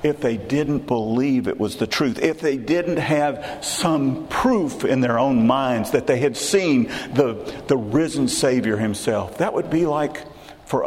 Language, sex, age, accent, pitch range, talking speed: English, male, 50-69, American, 115-145 Hz, 175 wpm